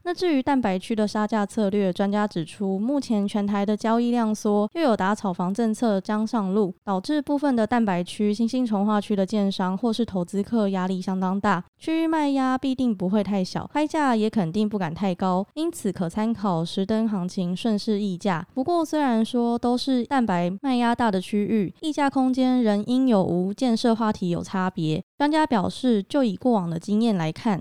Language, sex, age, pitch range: Chinese, female, 20-39, 195-250 Hz